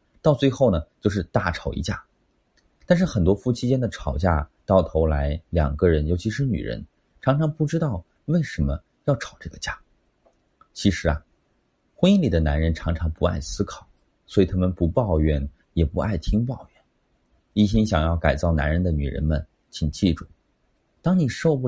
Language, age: Chinese, 30-49